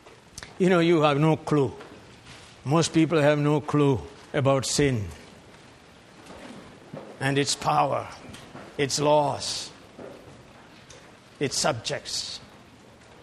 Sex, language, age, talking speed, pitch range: male, English, 60-79, 90 wpm, 120-150 Hz